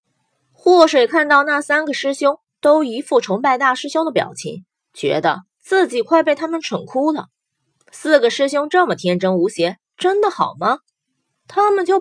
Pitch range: 230-330 Hz